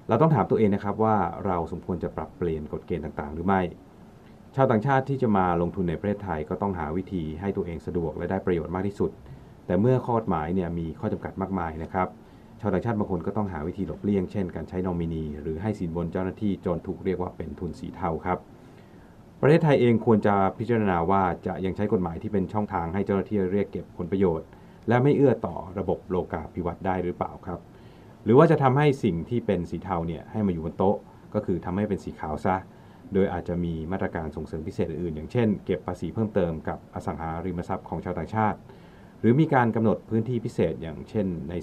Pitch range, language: 85-105 Hz, Thai